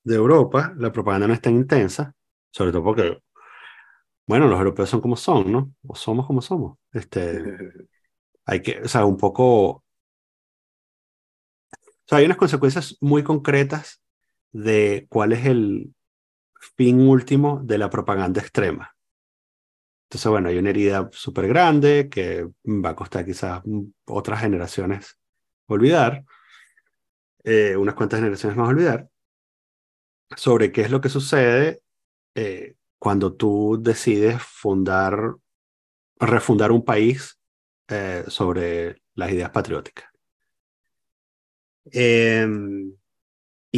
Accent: Argentinian